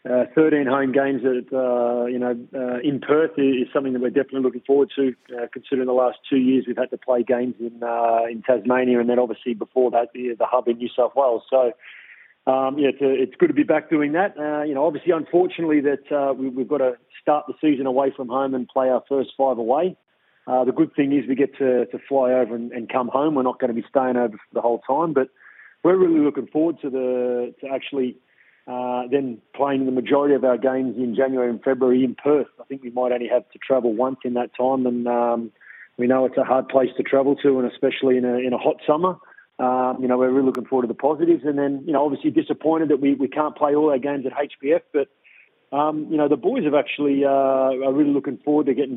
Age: 30-49